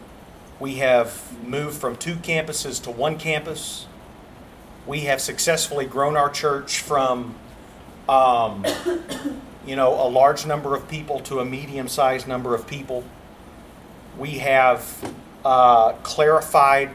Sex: male